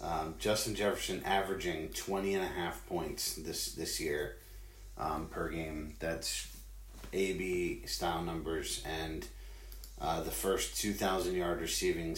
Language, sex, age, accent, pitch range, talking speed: English, male, 30-49, American, 80-100 Hz, 110 wpm